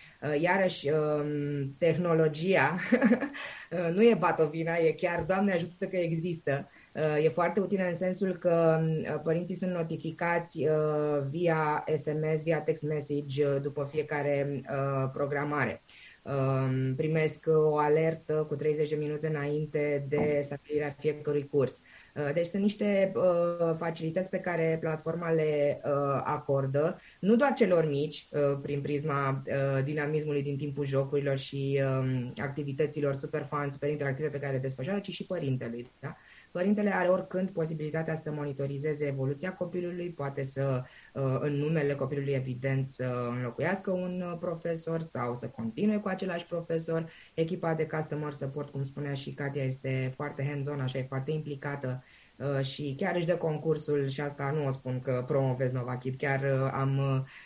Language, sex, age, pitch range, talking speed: Romanian, female, 20-39, 135-165 Hz, 140 wpm